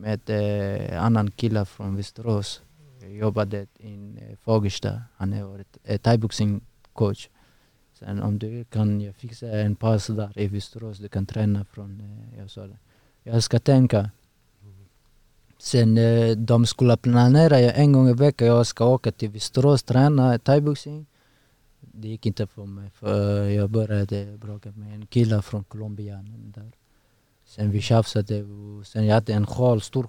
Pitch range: 105-120 Hz